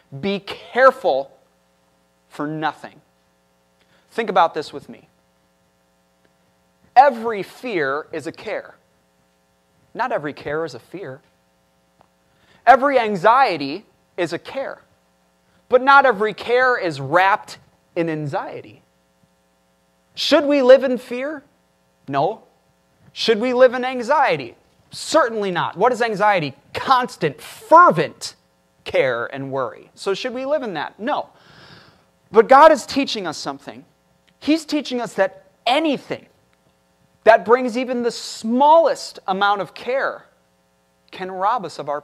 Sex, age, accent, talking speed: male, 30-49, American, 120 wpm